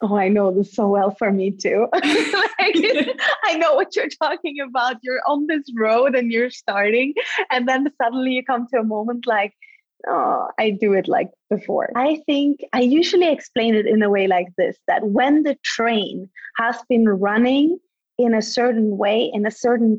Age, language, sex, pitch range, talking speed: 20-39, English, female, 205-255 Hz, 190 wpm